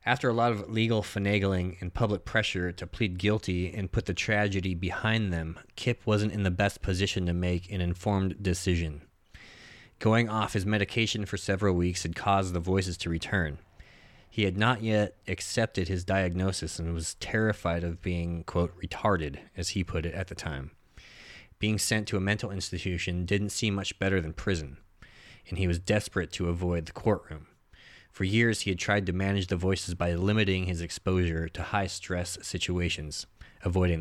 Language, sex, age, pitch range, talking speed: English, male, 30-49, 85-105 Hz, 175 wpm